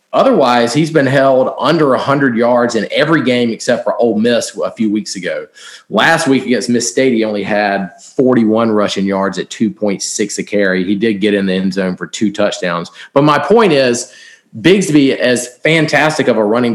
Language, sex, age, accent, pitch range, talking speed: English, male, 40-59, American, 105-140 Hz, 190 wpm